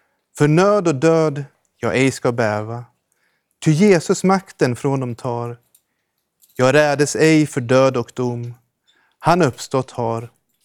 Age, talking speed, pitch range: 30-49, 135 wpm, 130-175 Hz